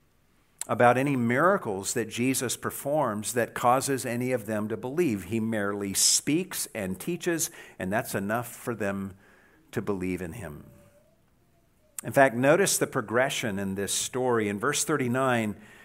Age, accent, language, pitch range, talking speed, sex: 50-69, American, English, 120-160 Hz, 145 wpm, male